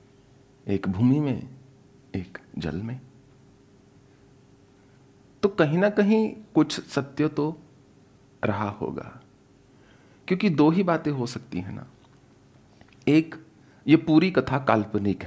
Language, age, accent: English, 40-59, Indian